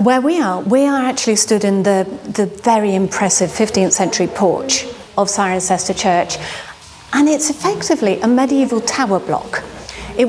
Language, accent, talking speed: English, British, 150 wpm